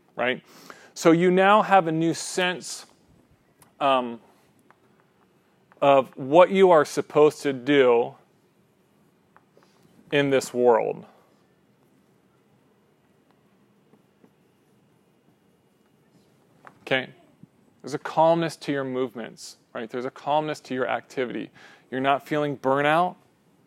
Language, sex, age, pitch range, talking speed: English, male, 30-49, 130-155 Hz, 95 wpm